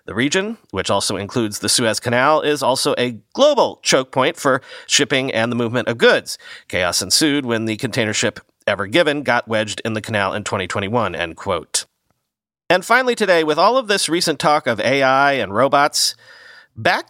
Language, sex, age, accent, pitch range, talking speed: English, male, 40-59, American, 120-180 Hz, 185 wpm